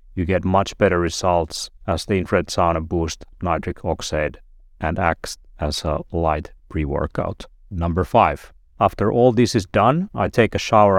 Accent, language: Finnish, English